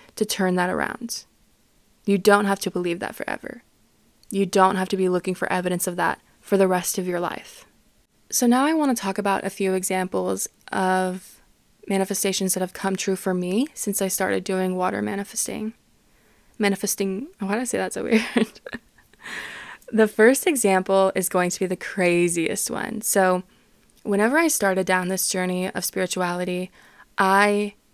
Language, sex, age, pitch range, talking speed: English, female, 20-39, 185-210 Hz, 170 wpm